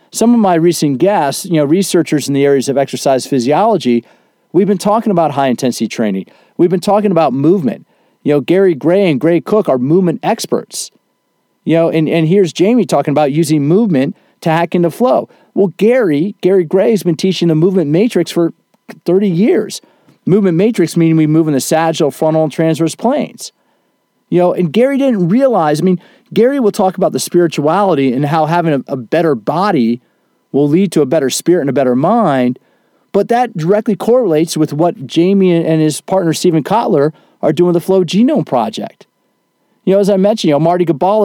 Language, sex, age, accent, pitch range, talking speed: English, male, 40-59, American, 155-200 Hz, 195 wpm